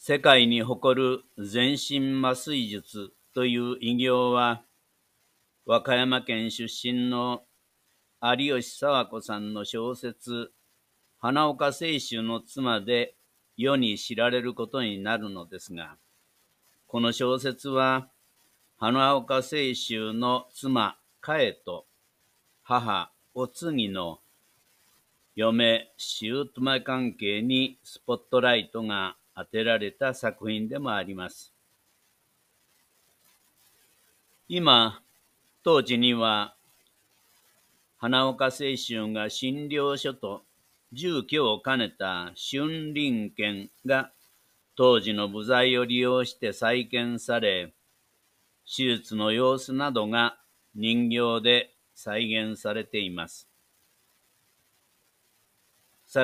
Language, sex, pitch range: Japanese, male, 110-130 Hz